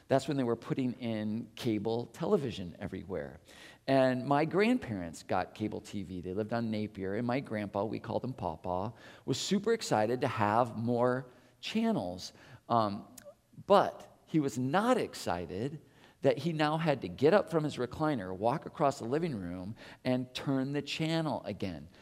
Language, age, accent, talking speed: English, 50-69, American, 160 wpm